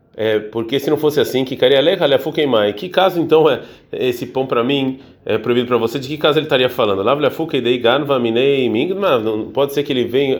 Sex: male